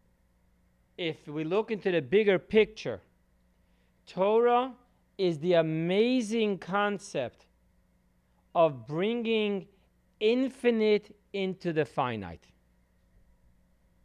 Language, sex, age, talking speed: English, male, 40-59, 75 wpm